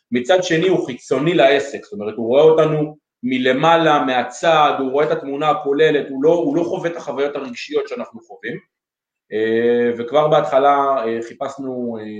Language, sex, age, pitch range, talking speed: Hebrew, male, 30-49, 115-145 Hz, 150 wpm